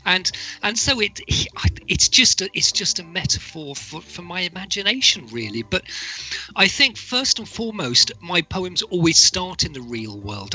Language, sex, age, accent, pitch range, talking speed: English, male, 40-59, British, 130-185 Hz, 170 wpm